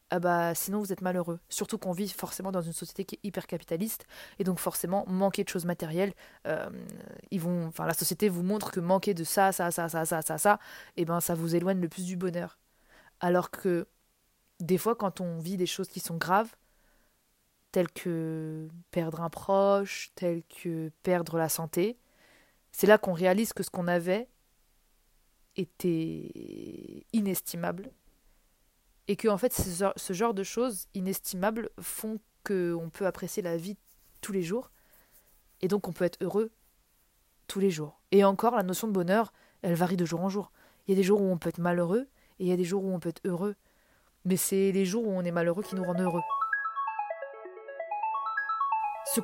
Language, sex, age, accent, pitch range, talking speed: French, female, 20-39, French, 175-210 Hz, 190 wpm